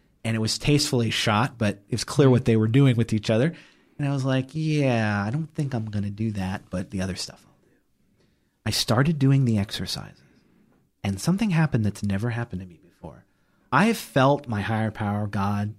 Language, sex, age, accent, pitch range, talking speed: English, male, 30-49, American, 110-135 Hz, 205 wpm